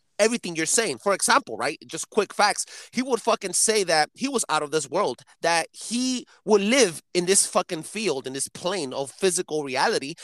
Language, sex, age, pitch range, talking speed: English, male, 30-49, 145-195 Hz, 200 wpm